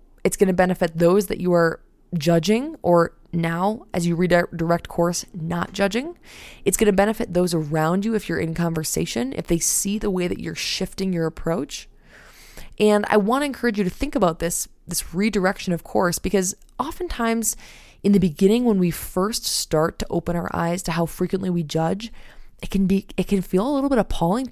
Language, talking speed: English, 195 wpm